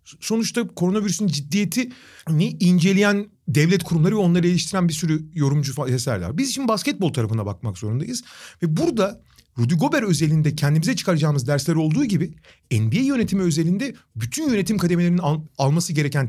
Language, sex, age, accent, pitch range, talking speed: Turkish, male, 40-59, native, 135-195 Hz, 135 wpm